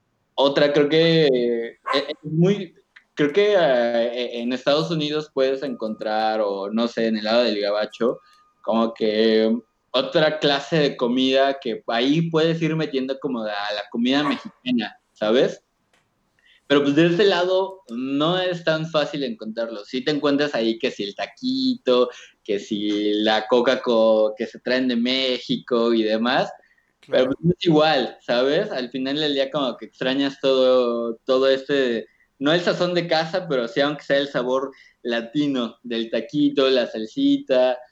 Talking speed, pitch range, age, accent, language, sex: 155 wpm, 115-145 Hz, 20-39, Mexican, Spanish, male